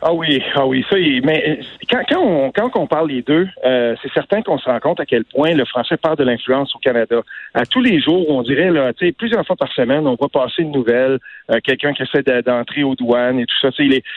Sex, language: male, French